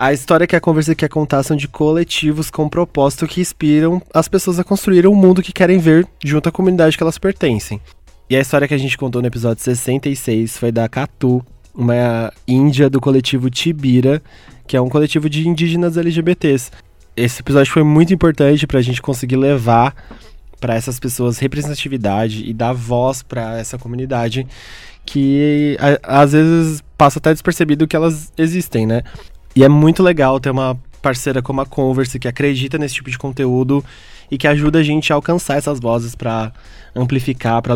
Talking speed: 175 wpm